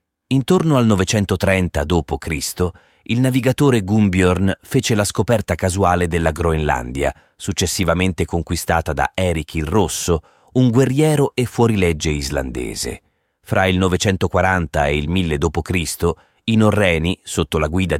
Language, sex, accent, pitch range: Italian, male, native, 80-100 Hz